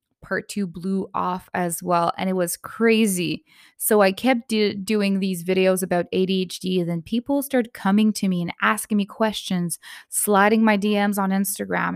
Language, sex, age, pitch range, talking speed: English, female, 20-39, 185-230 Hz, 175 wpm